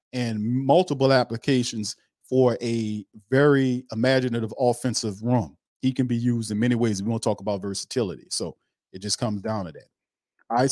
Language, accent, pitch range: English, American, 110-130 Hz